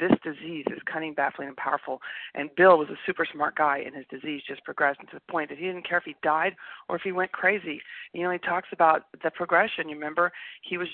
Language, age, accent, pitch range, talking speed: English, 40-59, American, 150-195 Hz, 245 wpm